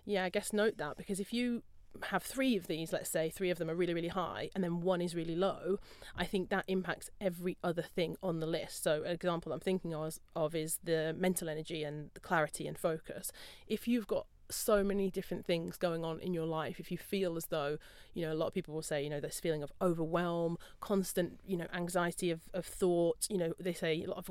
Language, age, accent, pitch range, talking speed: English, 30-49, British, 165-195 Hz, 235 wpm